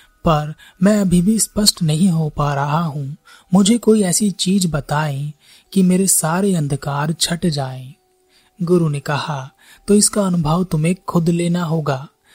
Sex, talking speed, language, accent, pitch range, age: male, 150 wpm, Hindi, native, 150-190 Hz, 30-49